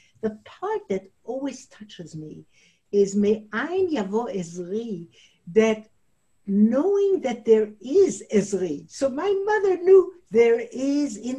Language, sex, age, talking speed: English, female, 60-79, 125 wpm